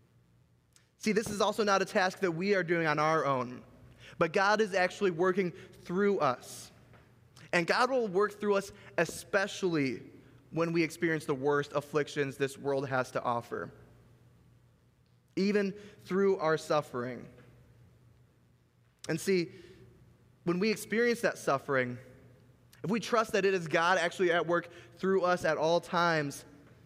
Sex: male